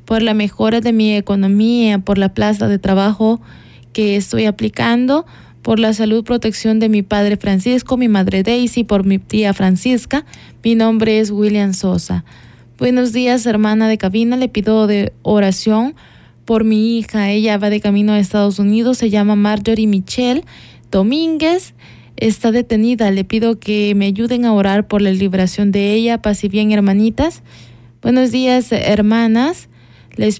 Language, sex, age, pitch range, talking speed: Spanish, female, 20-39, 200-225 Hz, 160 wpm